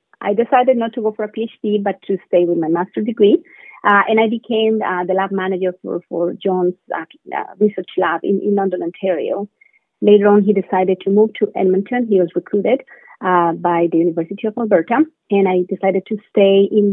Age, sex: 30-49, female